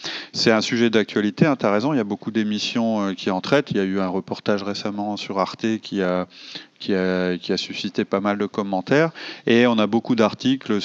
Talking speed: 210 wpm